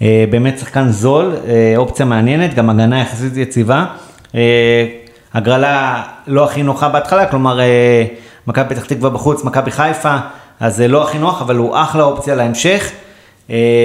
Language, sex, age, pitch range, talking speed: Hebrew, male, 30-49, 120-145 Hz, 160 wpm